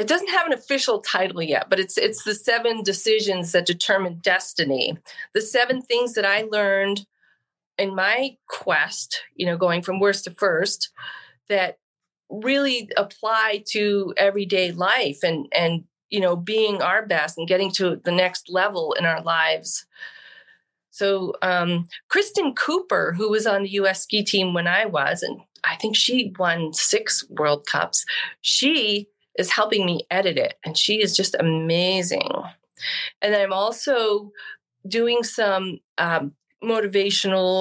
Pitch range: 180-220 Hz